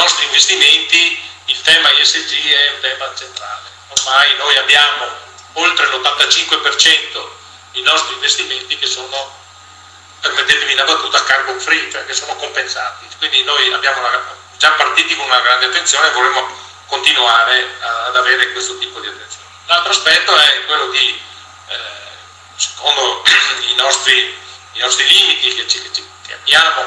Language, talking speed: Italian, 145 wpm